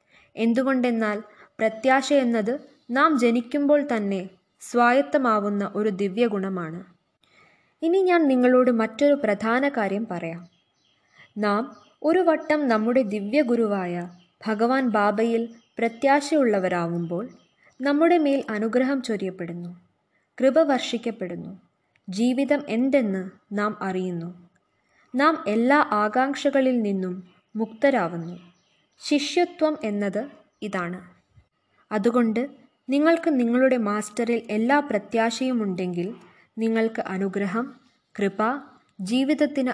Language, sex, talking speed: Malayalam, female, 80 wpm